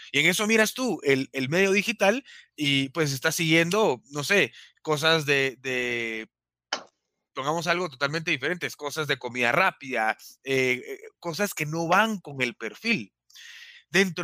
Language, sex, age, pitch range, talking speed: Spanish, male, 30-49, 130-175 Hz, 150 wpm